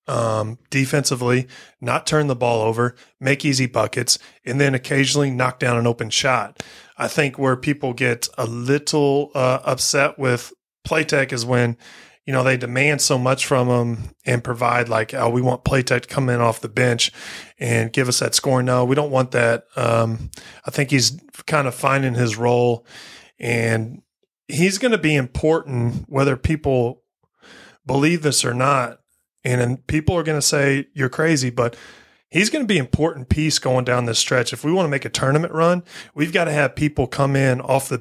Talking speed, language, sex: 190 wpm, English, male